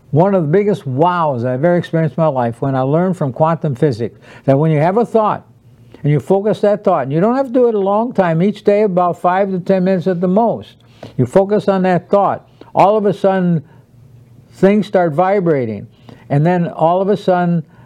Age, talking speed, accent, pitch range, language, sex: 60-79, 220 wpm, American, 125-175 Hz, English, male